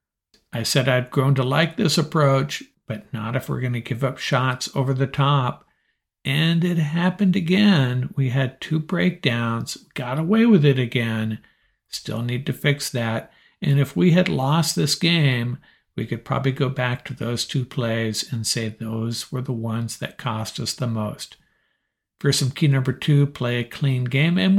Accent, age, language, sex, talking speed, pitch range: American, 60-79, English, male, 185 wpm, 120-150 Hz